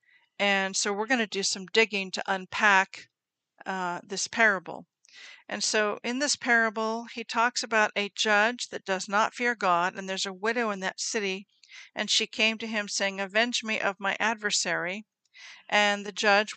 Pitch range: 185-225 Hz